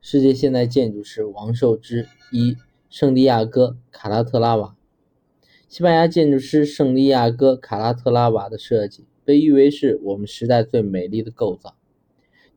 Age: 20-39